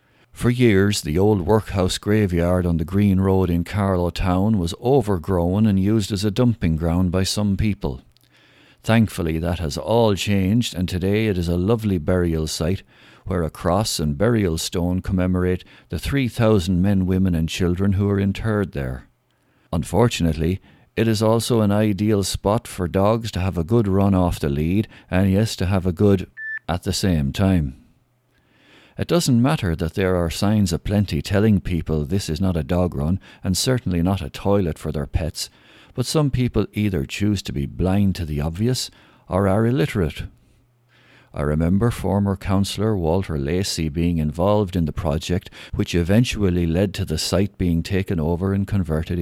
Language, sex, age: English, male, 60-79